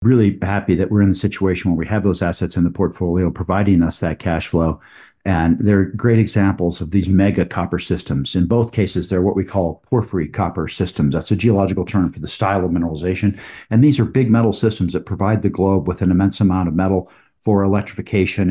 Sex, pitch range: male, 90-105 Hz